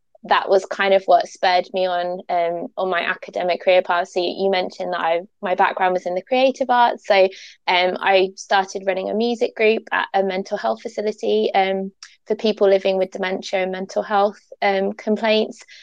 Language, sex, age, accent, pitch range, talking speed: English, female, 20-39, British, 185-205 Hz, 190 wpm